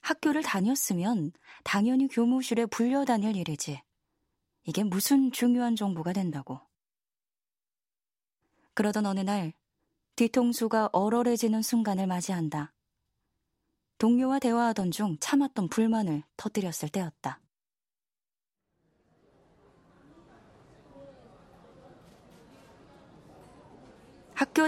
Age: 20-39